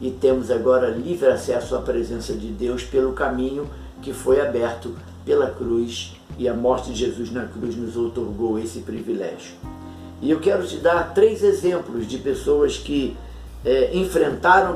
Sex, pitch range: male, 110-140 Hz